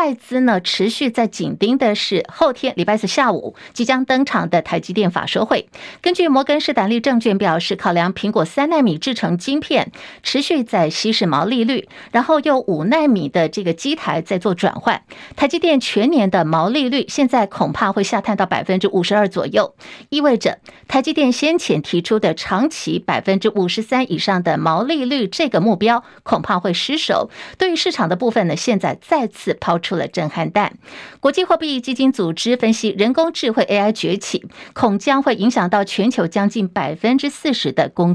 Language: Chinese